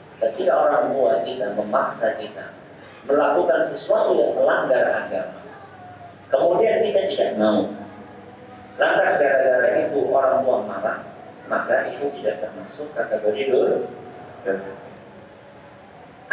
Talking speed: 100 wpm